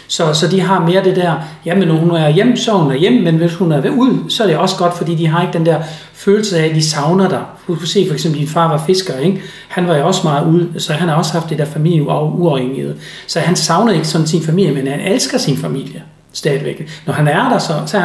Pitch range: 155-190 Hz